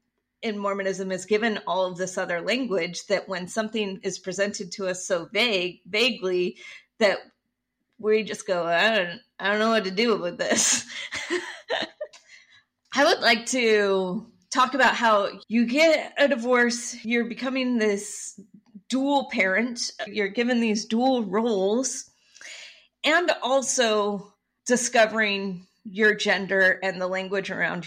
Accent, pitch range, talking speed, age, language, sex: American, 195-240 Hz, 135 wpm, 30-49, English, female